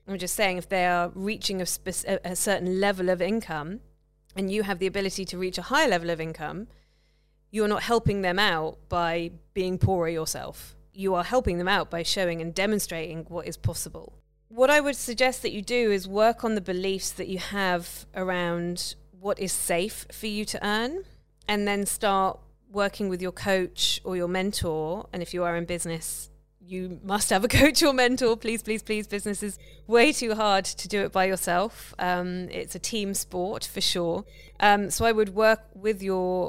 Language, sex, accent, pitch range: English, female, British, 175-205 Hz